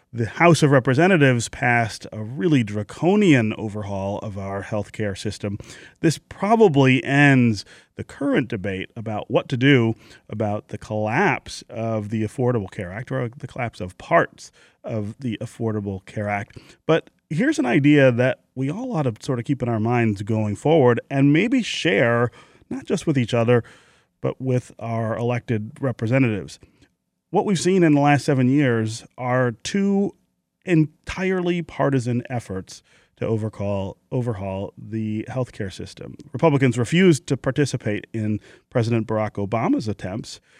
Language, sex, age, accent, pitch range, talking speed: English, male, 30-49, American, 110-140 Hz, 150 wpm